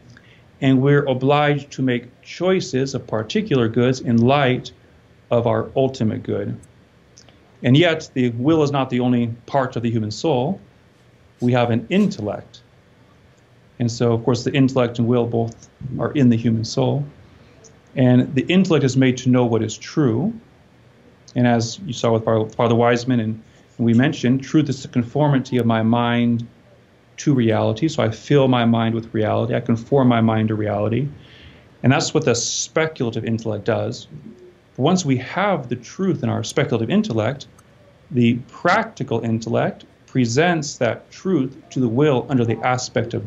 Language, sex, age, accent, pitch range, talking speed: English, male, 40-59, American, 115-140 Hz, 160 wpm